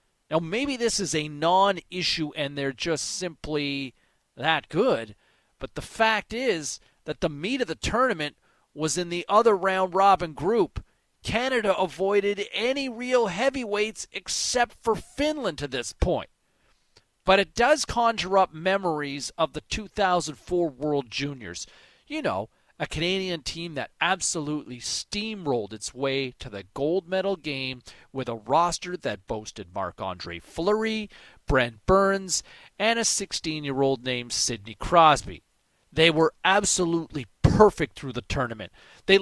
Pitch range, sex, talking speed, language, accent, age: 145-215 Hz, male, 140 wpm, English, American, 40-59